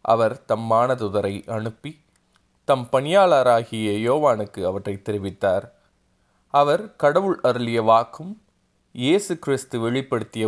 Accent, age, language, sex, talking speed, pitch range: native, 30-49, Tamil, male, 90 wpm, 110-140 Hz